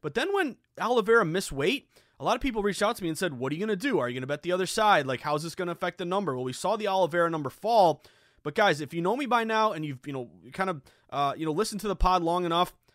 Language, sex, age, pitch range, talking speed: English, male, 30-49, 145-195 Hz, 315 wpm